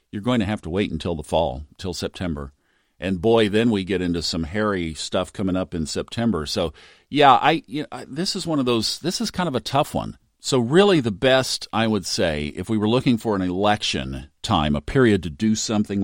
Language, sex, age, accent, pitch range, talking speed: English, male, 50-69, American, 85-120 Hz, 230 wpm